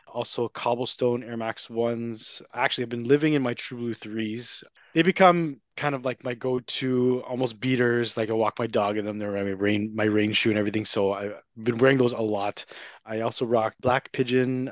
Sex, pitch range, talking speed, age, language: male, 110-130 Hz, 205 wpm, 20-39, English